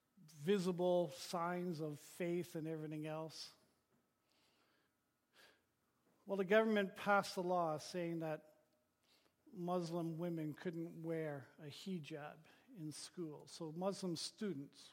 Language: English